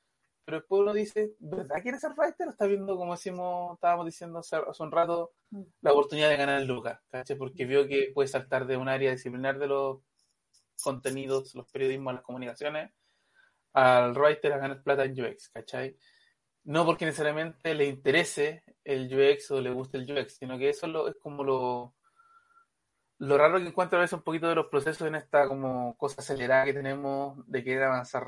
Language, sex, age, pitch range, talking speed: Spanish, male, 20-39, 135-175 Hz, 190 wpm